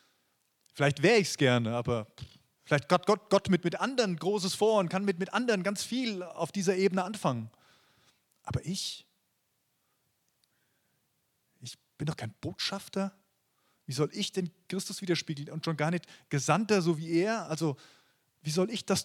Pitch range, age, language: 135-190 Hz, 30-49, German